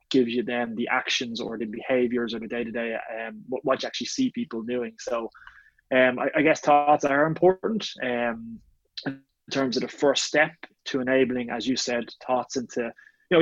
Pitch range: 120-135 Hz